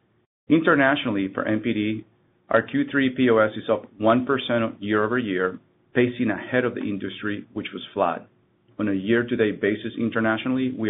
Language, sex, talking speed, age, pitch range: English, male, 150 wpm, 40-59, 105-125 Hz